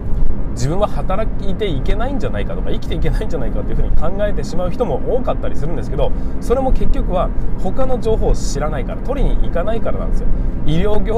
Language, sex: Japanese, male